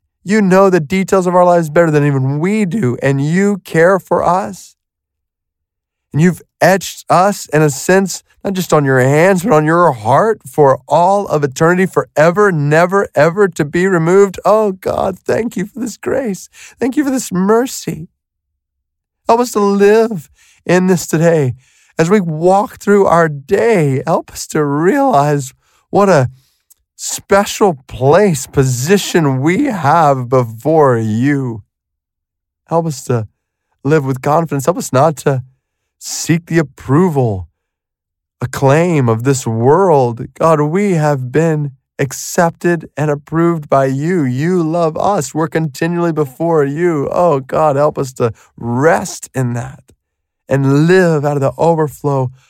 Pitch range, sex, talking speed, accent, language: 130-180 Hz, male, 145 wpm, American, English